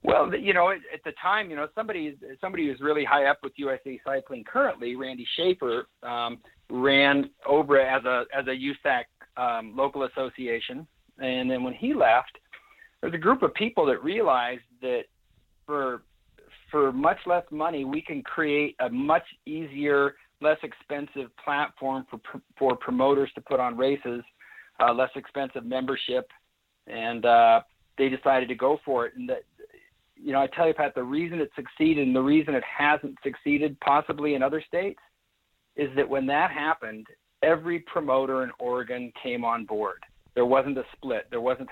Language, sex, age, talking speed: English, male, 50-69, 170 wpm